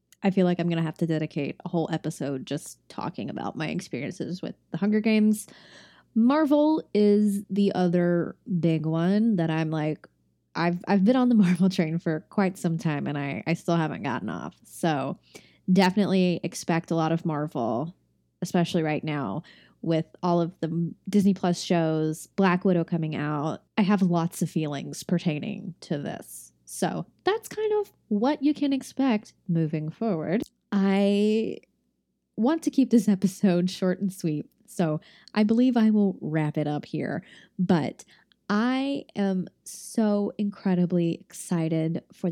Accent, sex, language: American, female, English